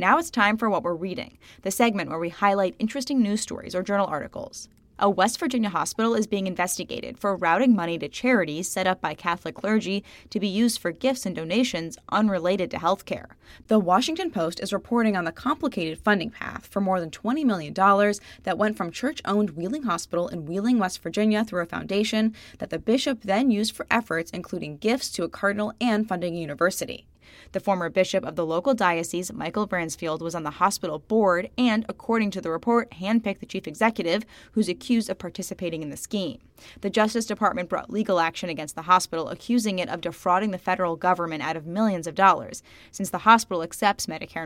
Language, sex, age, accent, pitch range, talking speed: English, female, 10-29, American, 175-220 Hz, 195 wpm